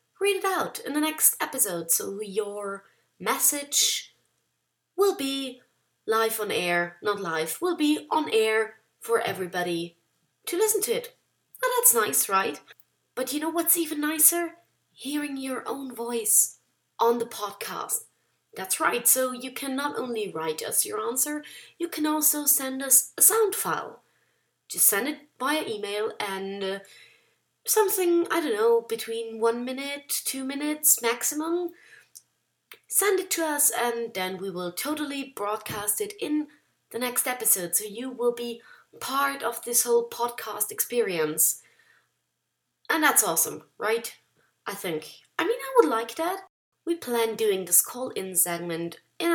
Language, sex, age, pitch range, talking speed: English, female, 30-49, 225-370 Hz, 150 wpm